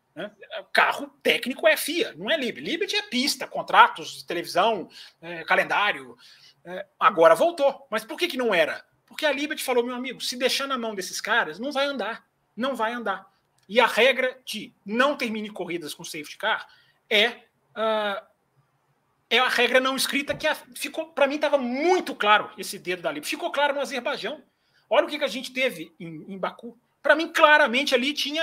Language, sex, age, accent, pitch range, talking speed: Portuguese, male, 30-49, Brazilian, 215-300 Hz, 190 wpm